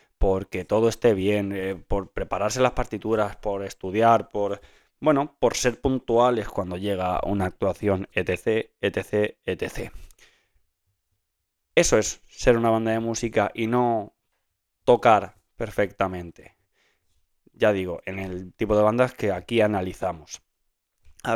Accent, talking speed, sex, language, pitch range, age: Spanish, 125 wpm, male, Spanish, 95-115 Hz, 20-39